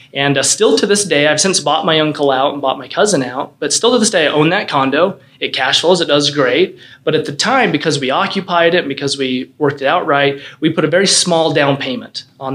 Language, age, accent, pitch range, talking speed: English, 30-49, American, 135-155 Hz, 265 wpm